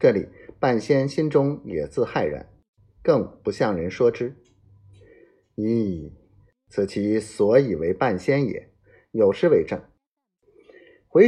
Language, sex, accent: Chinese, male, native